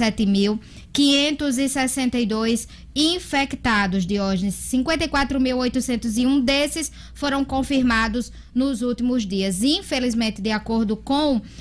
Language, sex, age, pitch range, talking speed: Portuguese, female, 10-29, 220-270 Hz, 70 wpm